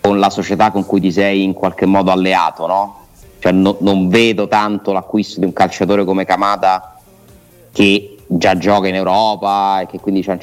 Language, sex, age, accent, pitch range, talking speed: Italian, male, 30-49, native, 90-110 Hz, 190 wpm